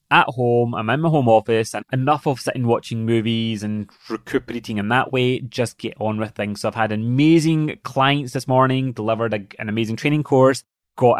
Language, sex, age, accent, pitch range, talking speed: English, male, 20-39, British, 110-140 Hz, 195 wpm